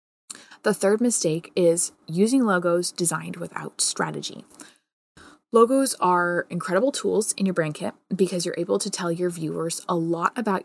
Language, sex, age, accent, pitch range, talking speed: English, female, 20-39, American, 165-200 Hz, 150 wpm